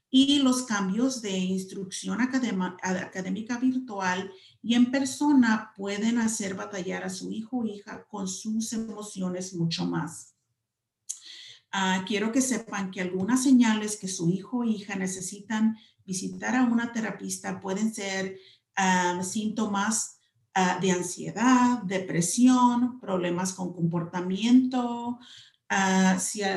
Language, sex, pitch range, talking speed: English, female, 185-230 Hz, 125 wpm